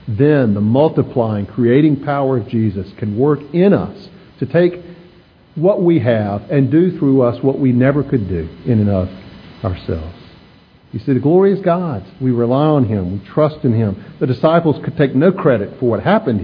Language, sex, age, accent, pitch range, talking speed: English, male, 50-69, American, 110-155 Hz, 190 wpm